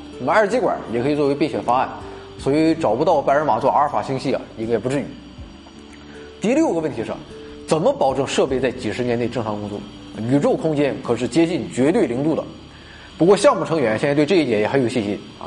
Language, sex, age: Chinese, male, 20-39